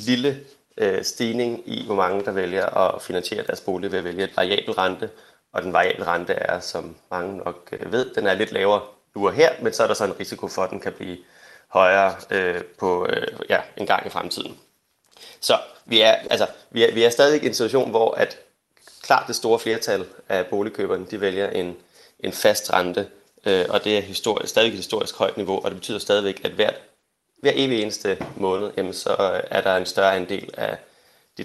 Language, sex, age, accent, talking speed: Danish, male, 30-49, native, 210 wpm